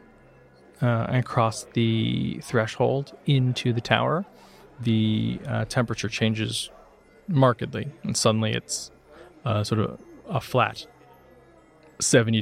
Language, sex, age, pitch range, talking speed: English, male, 20-39, 105-120 Hz, 105 wpm